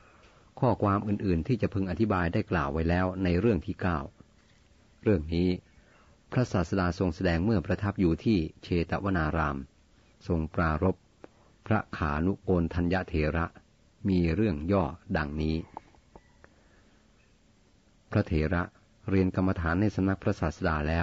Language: Thai